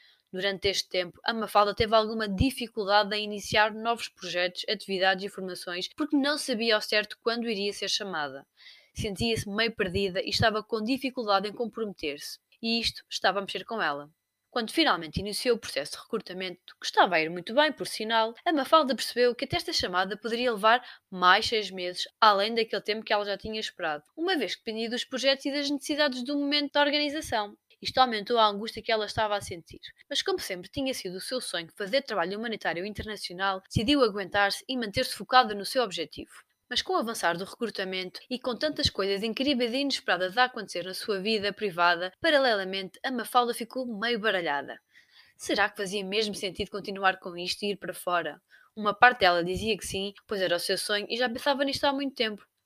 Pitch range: 195-250 Hz